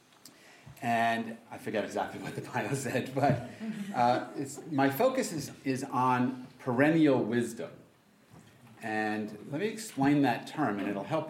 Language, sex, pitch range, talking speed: English, male, 110-140 Hz, 140 wpm